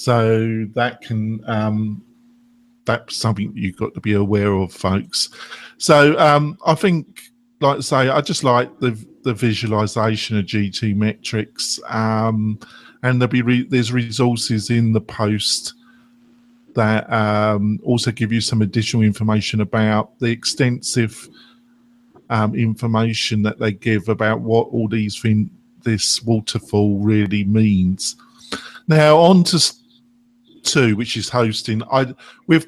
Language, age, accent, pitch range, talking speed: English, 50-69, British, 110-145 Hz, 130 wpm